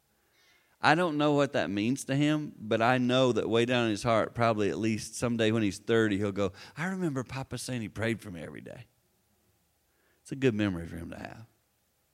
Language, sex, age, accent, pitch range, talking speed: English, male, 50-69, American, 110-140 Hz, 215 wpm